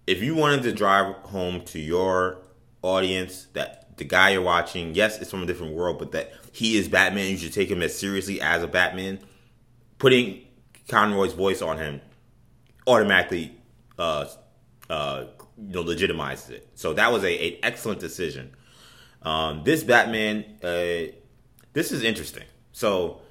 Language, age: English, 20-39